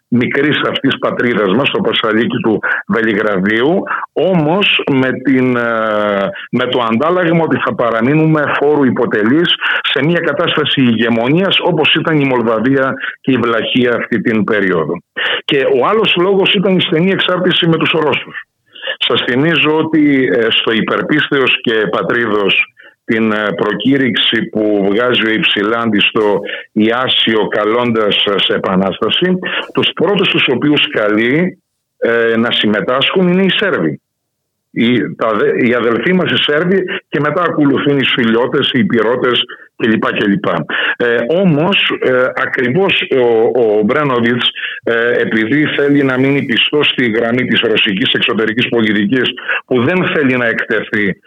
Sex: male